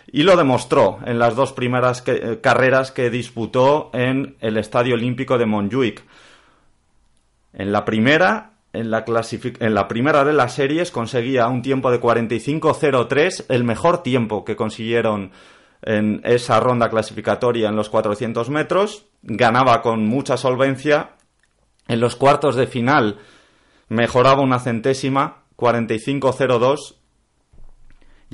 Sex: male